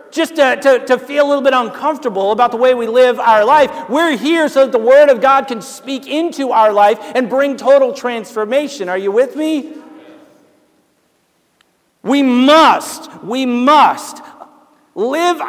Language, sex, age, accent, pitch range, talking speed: English, male, 50-69, American, 255-320 Hz, 160 wpm